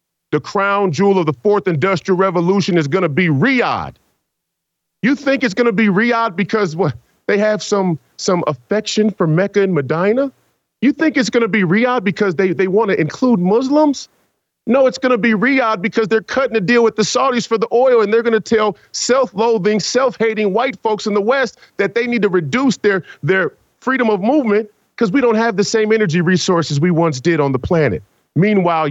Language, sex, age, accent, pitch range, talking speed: English, male, 40-59, American, 170-240 Hz, 205 wpm